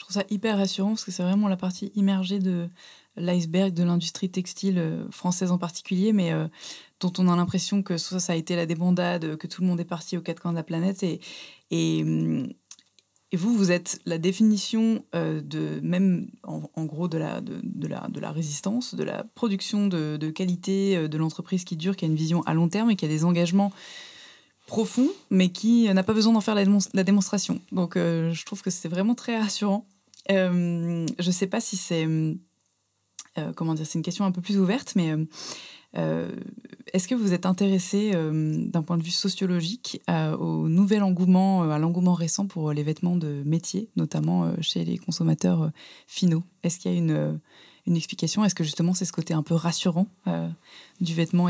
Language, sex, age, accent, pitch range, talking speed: French, female, 20-39, French, 165-195 Hz, 205 wpm